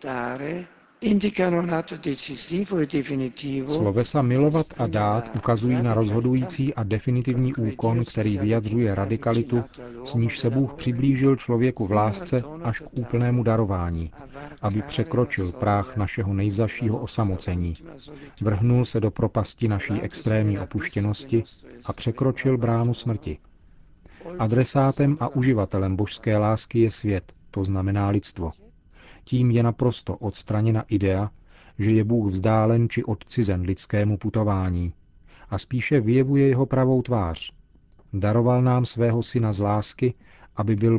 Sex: male